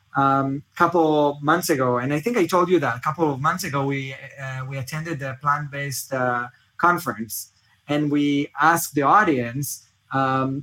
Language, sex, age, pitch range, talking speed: English, male, 20-39, 130-160 Hz, 175 wpm